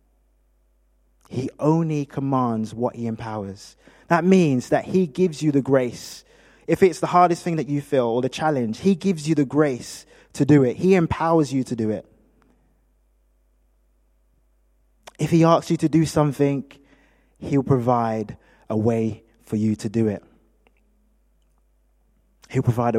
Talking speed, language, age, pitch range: 150 wpm, English, 20-39, 100-145 Hz